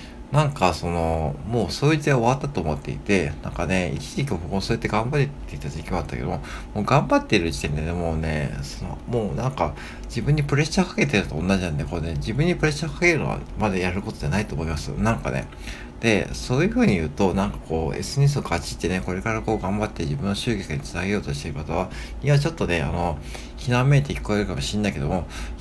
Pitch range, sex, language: 80-125 Hz, male, Japanese